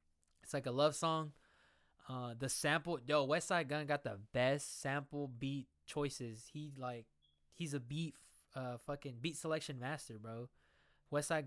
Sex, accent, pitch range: male, American, 115-145 Hz